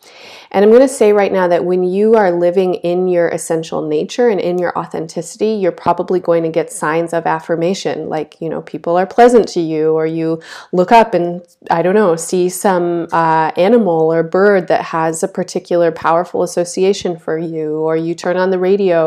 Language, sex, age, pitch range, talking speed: English, female, 30-49, 165-195 Hz, 200 wpm